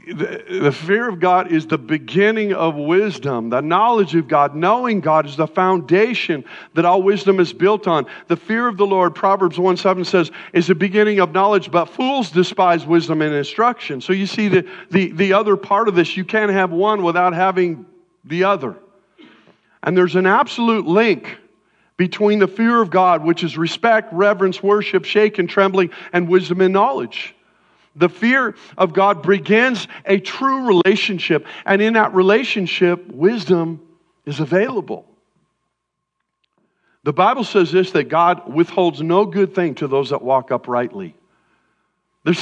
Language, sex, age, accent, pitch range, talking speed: English, male, 50-69, American, 170-205 Hz, 165 wpm